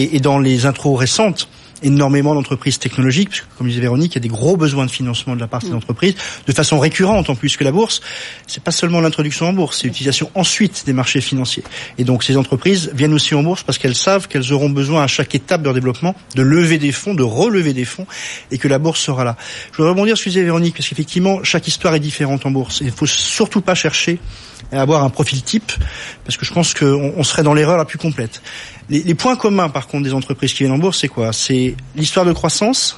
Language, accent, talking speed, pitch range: French, French, 245 wpm, 130-165 Hz